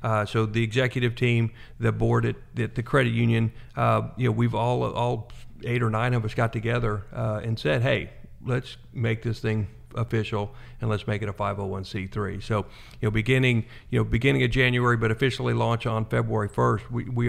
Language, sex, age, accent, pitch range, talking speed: English, male, 50-69, American, 110-120 Hz, 200 wpm